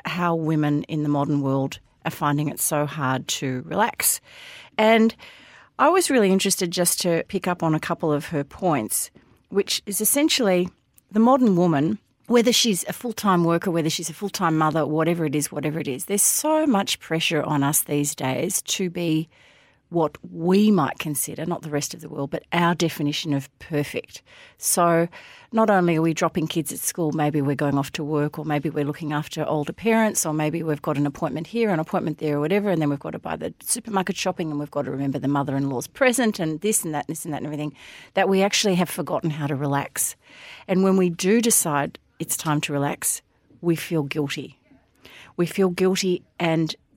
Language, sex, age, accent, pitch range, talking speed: English, female, 40-59, Australian, 150-185 Hz, 205 wpm